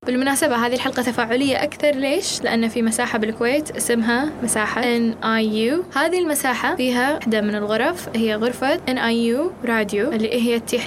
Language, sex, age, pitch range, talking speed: Arabic, female, 10-29, 225-270 Hz, 165 wpm